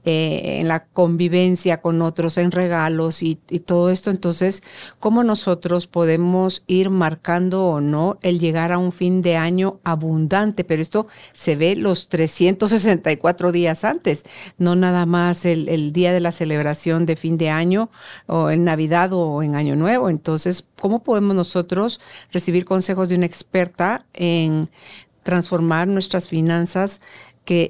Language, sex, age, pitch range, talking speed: Spanish, female, 50-69, 160-190 Hz, 150 wpm